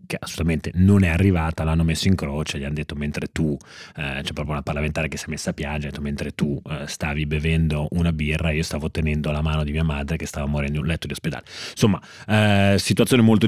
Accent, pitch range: native, 85-105 Hz